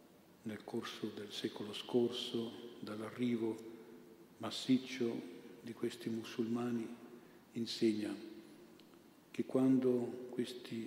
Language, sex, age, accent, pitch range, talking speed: Italian, male, 50-69, native, 115-120 Hz, 75 wpm